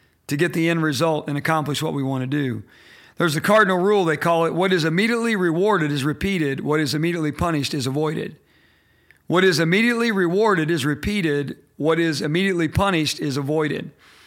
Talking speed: 185 wpm